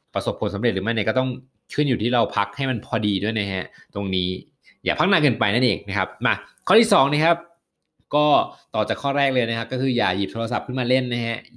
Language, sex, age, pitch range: Thai, male, 20-39, 105-130 Hz